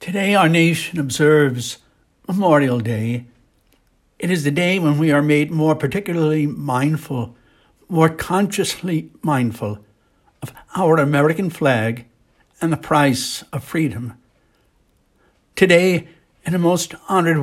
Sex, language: male, English